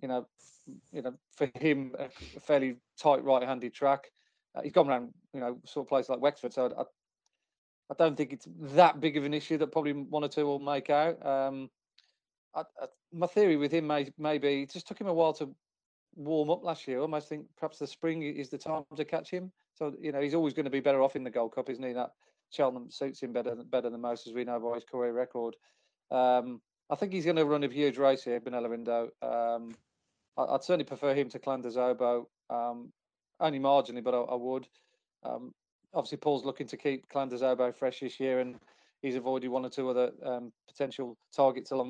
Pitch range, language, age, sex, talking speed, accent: 125-150 Hz, English, 30-49, male, 220 wpm, British